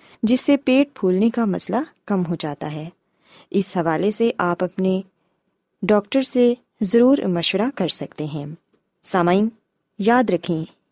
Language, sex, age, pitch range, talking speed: Urdu, female, 20-39, 180-245 Hz, 135 wpm